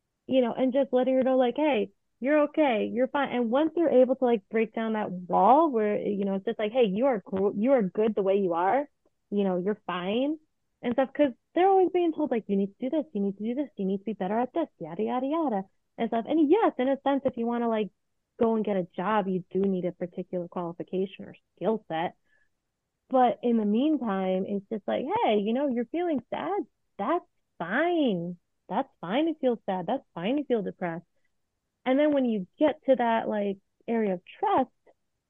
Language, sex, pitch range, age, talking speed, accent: English, female, 195-260 Hz, 30-49, 230 wpm, American